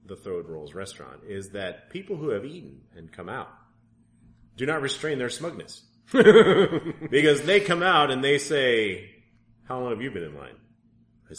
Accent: American